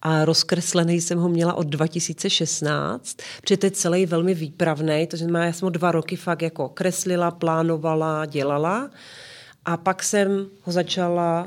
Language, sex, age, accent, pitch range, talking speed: Czech, female, 40-59, native, 160-175 Hz, 155 wpm